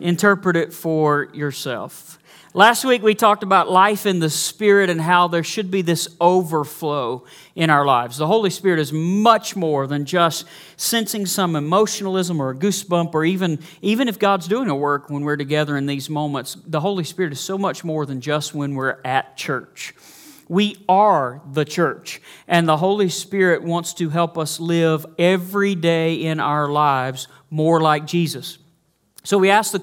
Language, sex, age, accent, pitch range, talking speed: English, male, 40-59, American, 155-195 Hz, 180 wpm